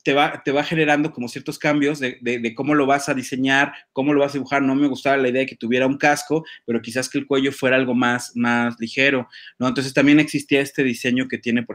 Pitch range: 120-140 Hz